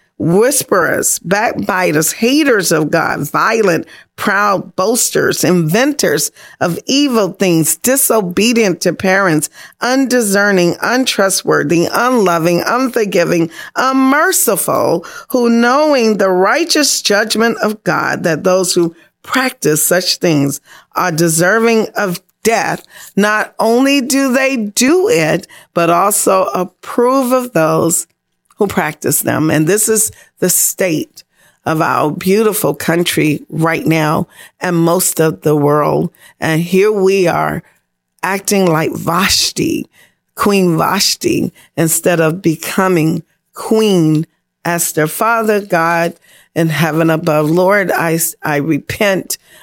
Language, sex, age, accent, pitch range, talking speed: English, female, 40-59, American, 165-225 Hz, 110 wpm